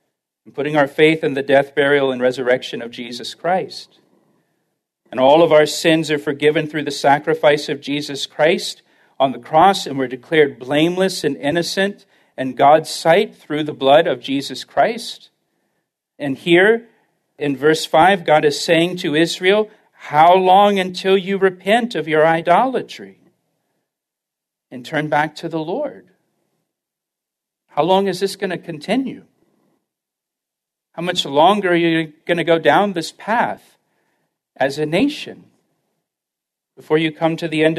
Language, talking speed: English, 150 wpm